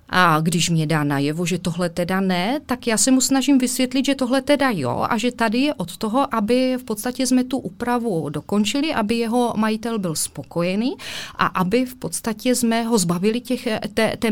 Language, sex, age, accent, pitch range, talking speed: Czech, female, 30-49, native, 175-225 Hz, 195 wpm